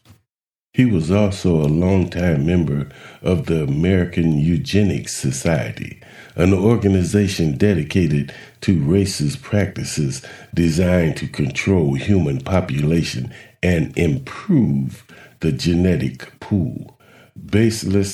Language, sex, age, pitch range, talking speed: English, male, 50-69, 75-100 Hz, 95 wpm